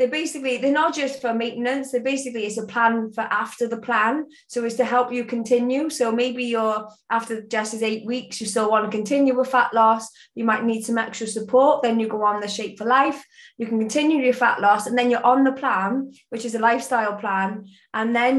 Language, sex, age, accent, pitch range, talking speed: English, female, 20-39, British, 220-250 Hz, 230 wpm